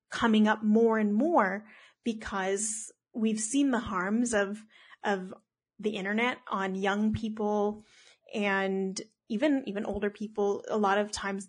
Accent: American